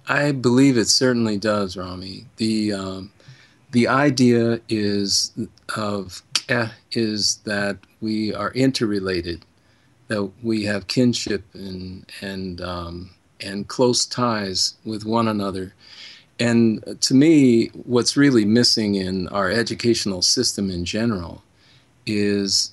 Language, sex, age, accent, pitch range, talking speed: English, male, 50-69, American, 95-120 Hz, 115 wpm